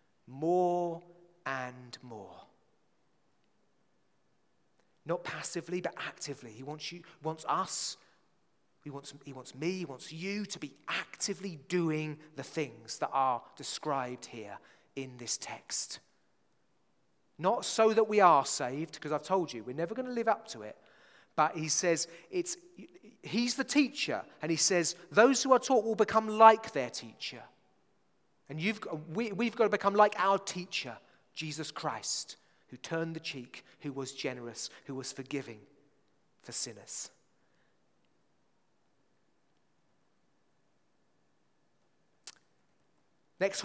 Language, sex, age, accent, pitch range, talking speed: English, male, 30-49, British, 150-195 Hz, 130 wpm